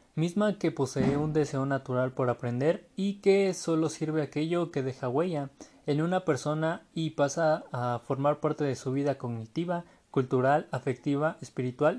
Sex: male